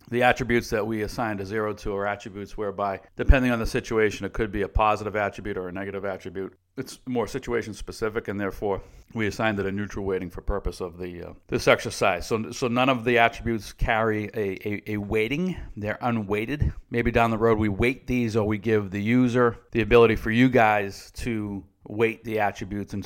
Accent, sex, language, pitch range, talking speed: American, male, English, 100-120 Hz, 205 wpm